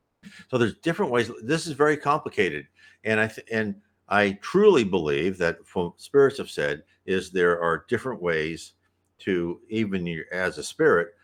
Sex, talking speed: male, 160 wpm